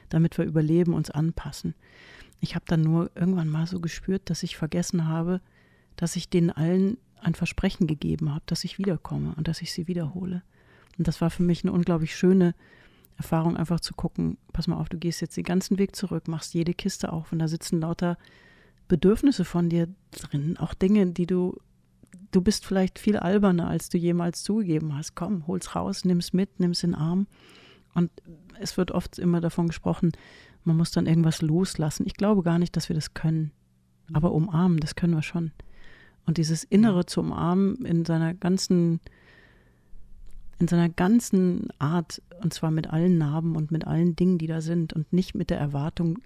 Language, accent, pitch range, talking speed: English, German, 160-180 Hz, 190 wpm